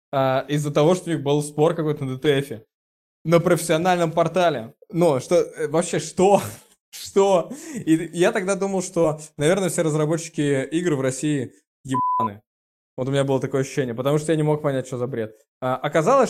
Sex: male